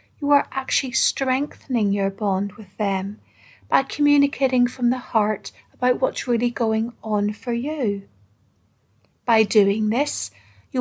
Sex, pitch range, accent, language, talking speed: female, 200-255 Hz, British, English, 135 wpm